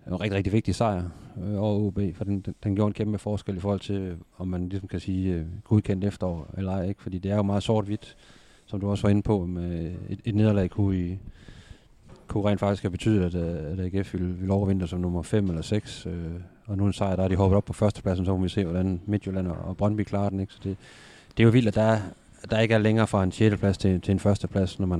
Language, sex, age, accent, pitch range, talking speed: Danish, male, 30-49, native, 90-105 Hz, 275 wpm